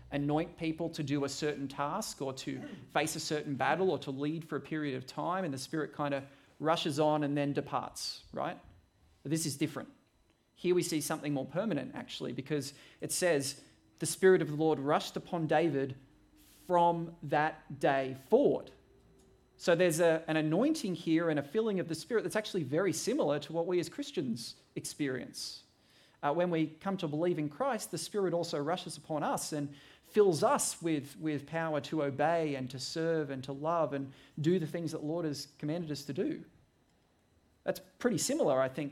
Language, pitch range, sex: English, 140-170 Hz, male